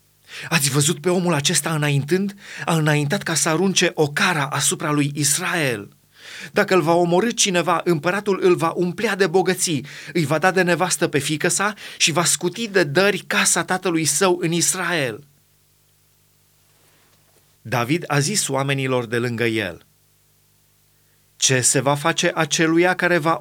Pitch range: 140-180 Hz